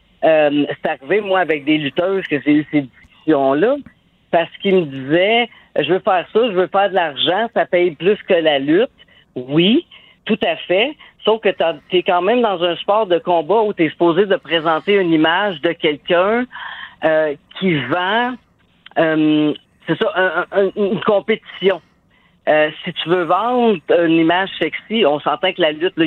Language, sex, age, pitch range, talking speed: French, female, 50-69, 150-200 Hz, 185 wpm